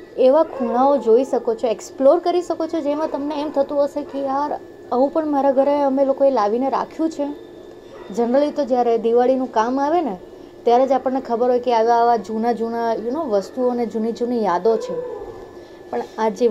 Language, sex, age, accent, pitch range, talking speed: Gujarati, female, 20-39, native, 220-305 Hz, 185 wpm